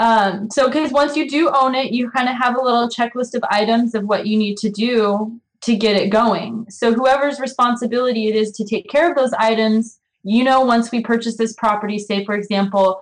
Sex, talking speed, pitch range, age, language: female, 220 wpm, 195-225 Hz, 20-39, English